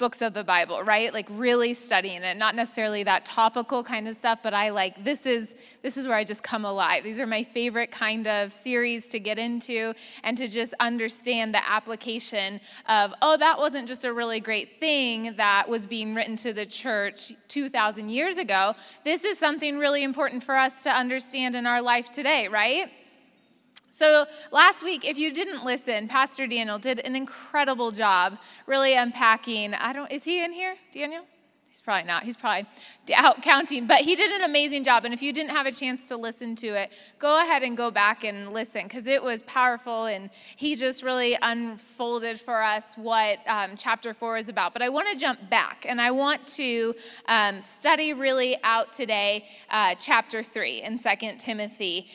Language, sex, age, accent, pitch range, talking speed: English, female, 20-39, American, 220-265 Hz, 195 wpm